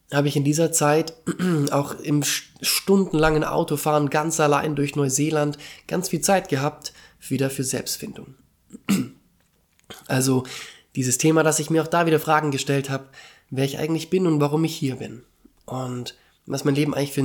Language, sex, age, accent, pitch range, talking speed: German, male, 20-39, German, 130-155 Hz, 165 wpm